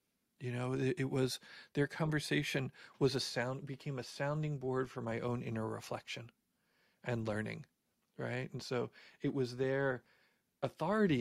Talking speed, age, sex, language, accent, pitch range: 145 wpm, 40-59, male, English, American, 120-150 Hz